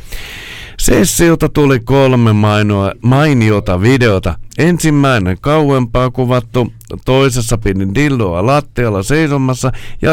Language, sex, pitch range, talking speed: Finnish, male, 100-135 Hz, 85 wpm